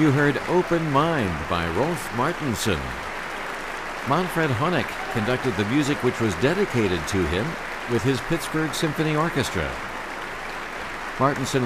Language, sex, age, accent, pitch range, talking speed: English, male, 60-79, American, 95-135 Hz, 120 wpm